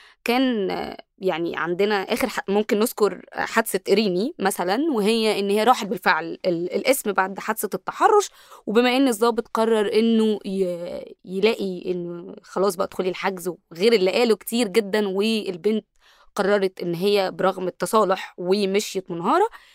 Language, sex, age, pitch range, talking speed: Arabic, female, 20-39, 190-230 Hz, 130 wpm